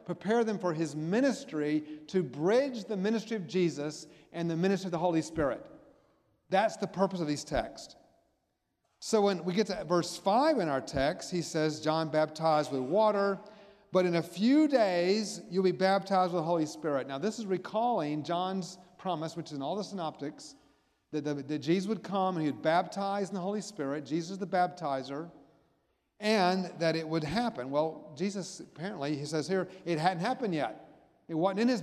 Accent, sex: American, male